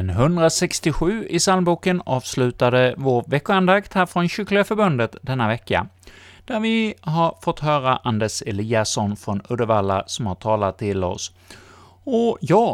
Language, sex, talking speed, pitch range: Swedish, male, 125 wpm, 105-150 Hz